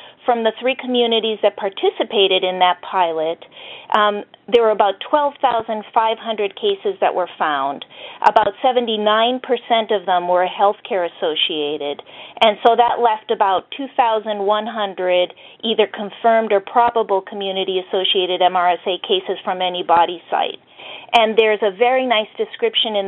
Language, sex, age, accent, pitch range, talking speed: English, female, 40-59, American, 195-230 Hz, 125 wpm